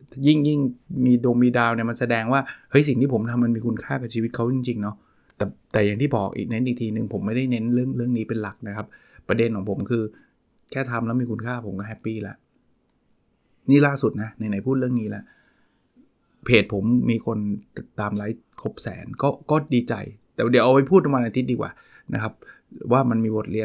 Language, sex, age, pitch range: Thai, male, 20-39, 110-130 Hz